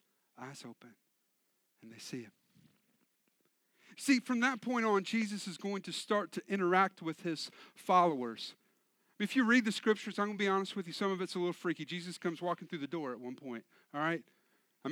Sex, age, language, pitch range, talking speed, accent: male, 40-59, English, 175-225 Hz, 205 wpm, American